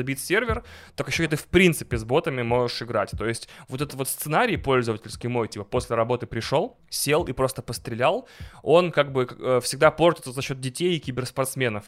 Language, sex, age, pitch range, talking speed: Russian, male, 20-39, 120-150 Hz, 190 wpm